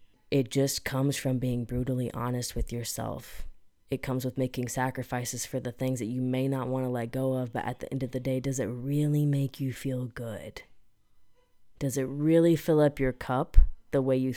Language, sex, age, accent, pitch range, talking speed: English, female, 20-39, American, 125-145 Hz, 210 wpm